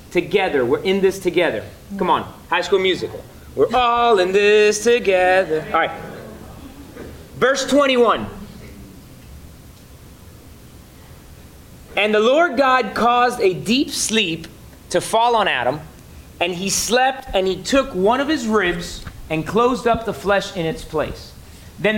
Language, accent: English, American